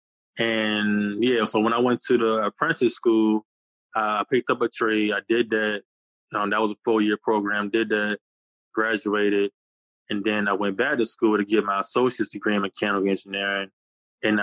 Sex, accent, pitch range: male, American, 100-110 Hz